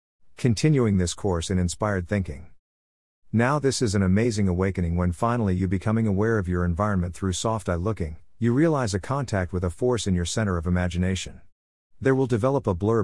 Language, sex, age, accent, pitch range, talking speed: English, male, 50-69, American, 90-115 Hz, 190 wpm